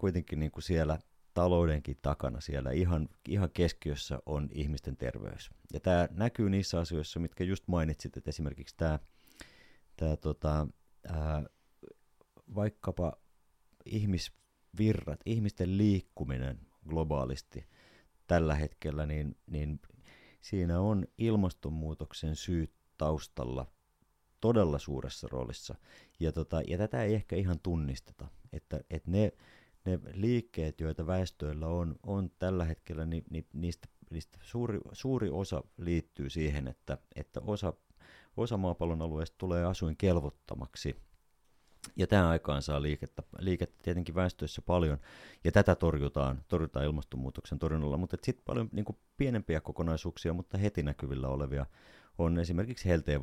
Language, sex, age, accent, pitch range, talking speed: Finnish, male, 30-49, native, 75-95 Hz, 120 wpm